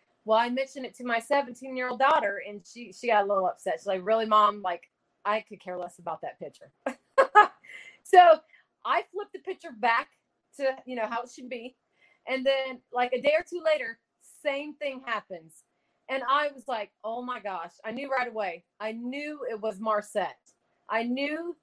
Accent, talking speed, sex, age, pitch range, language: American, 195 wpm, female, 30-49, 220-275 Hz, English